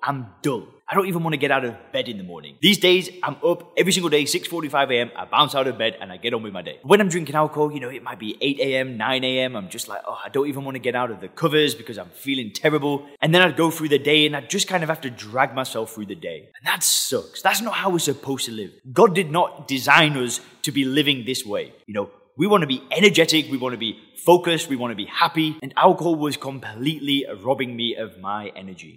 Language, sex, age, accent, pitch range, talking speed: English, male, 20-39, British, 130-165 Hz, 270 wpm